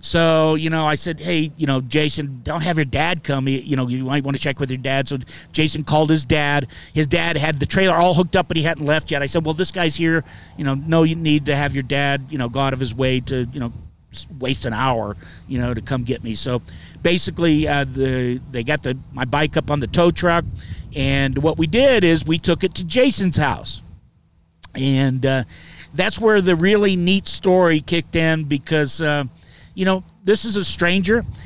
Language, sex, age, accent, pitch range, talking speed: English, male, 50-69, American, 135-170 Hz, 230 wpm